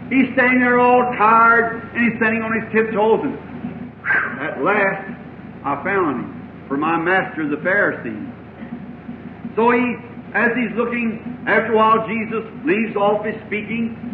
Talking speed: 150 wpm